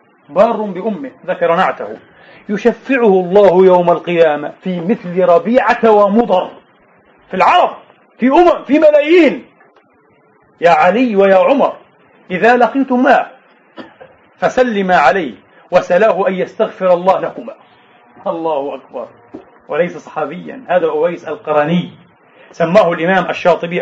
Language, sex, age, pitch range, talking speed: Arabic, male, 40-59, 165-235 Hz, 105 wpm